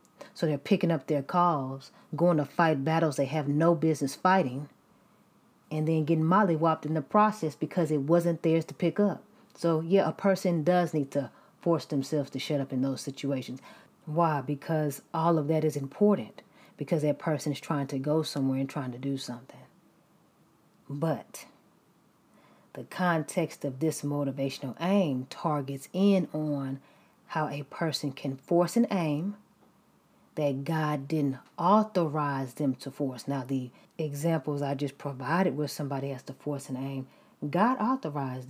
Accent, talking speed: American, 160 wpm